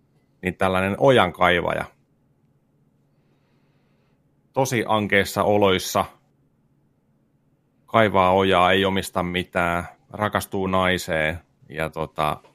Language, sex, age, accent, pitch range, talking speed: Finnish, male, 30-49, native, 85-100 Hz, 75 wpm